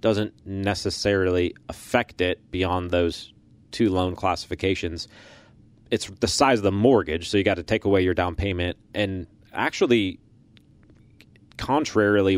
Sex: male